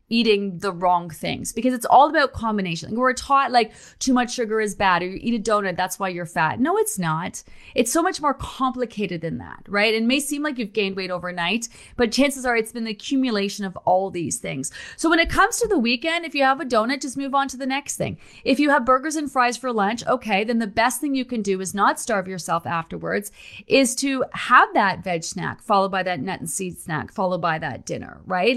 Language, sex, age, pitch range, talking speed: English, female, 30-49, 190-255 Hz, 240 wpm